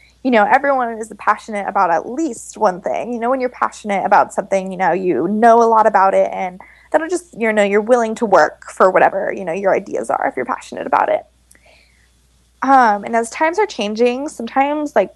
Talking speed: 215 wpm